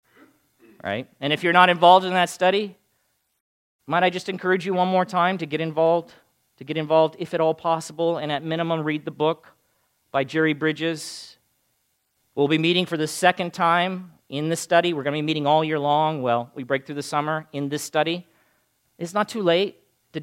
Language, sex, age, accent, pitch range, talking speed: English, male, 40-59, American, 145-170 Hz, 200 wpm